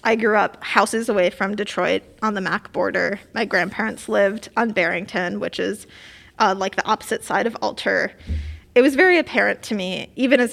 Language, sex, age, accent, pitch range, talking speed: English, female, 20-39, American, 210-255 Hz, 190 wpm